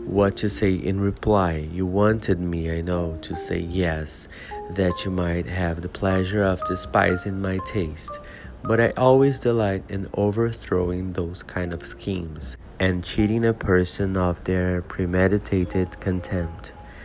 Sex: male